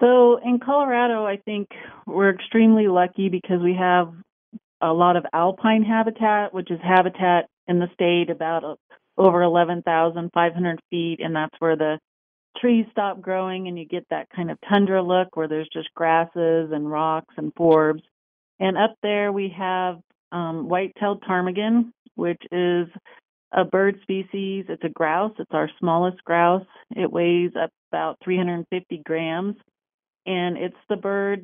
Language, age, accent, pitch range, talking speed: English, 40-59, American, 165-195 Hz, 150 wpm